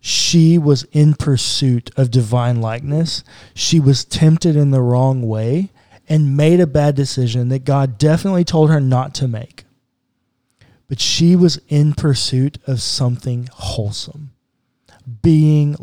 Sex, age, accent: male, 20-39, American